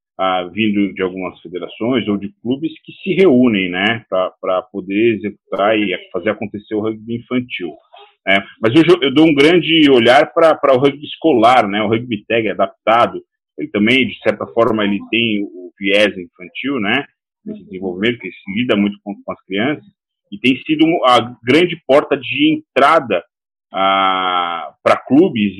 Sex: male